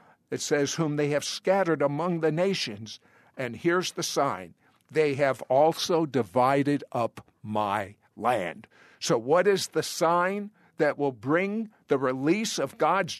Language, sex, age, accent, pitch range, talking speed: English, male, 50-69, American, 135-180 Hz, 145 wpm